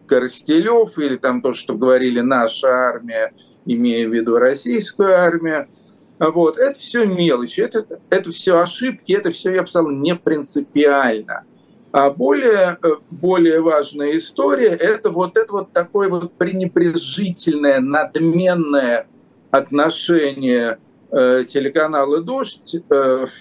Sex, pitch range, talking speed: male, 140-190 Hz, 120 wpm